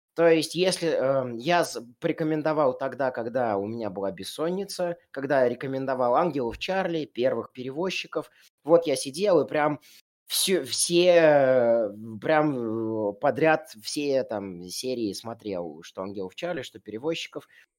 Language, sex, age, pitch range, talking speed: Russian, male, 20-39, 100-150 Hz, 120 wpm